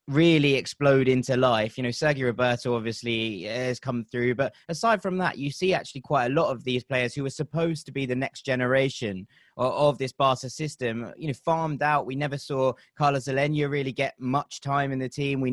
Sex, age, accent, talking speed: male, 20-39, British, 215 wpm